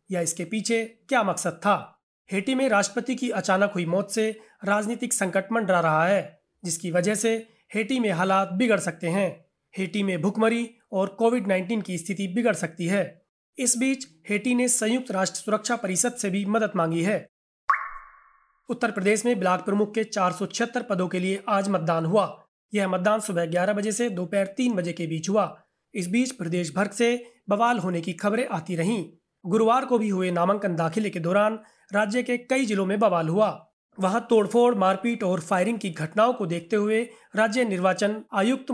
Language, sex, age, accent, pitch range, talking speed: Hindi, male, 30-49, native, 185-230 Hz, 180 wpm